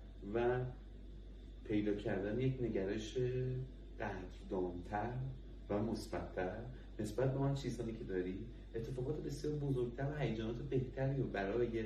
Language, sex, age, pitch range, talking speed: Persian, male, 30-49, 90-120 Hz, 110 wpm